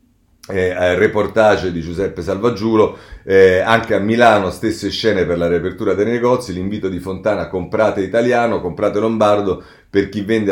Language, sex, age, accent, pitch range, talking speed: Italian, male, 40-59, native, 90-115 Hz, 150 wpm